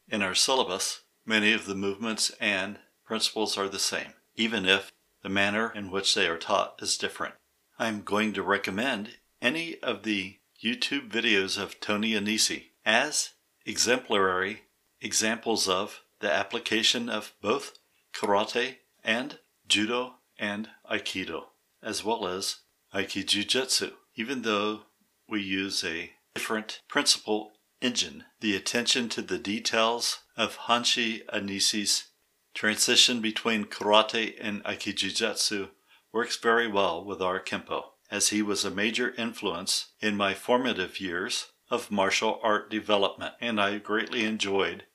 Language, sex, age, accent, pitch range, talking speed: English, male, 60-79, American, 100-115 Hz, 130 wpm